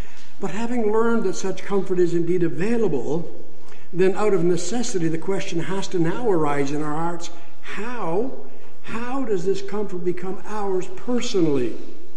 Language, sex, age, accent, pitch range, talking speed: English, male, 60-79, American, 170-205 Hz, 150 wpm